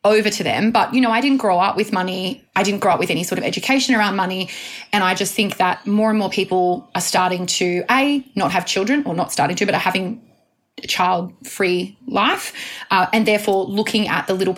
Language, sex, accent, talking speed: English, female, Australian, 230 wpm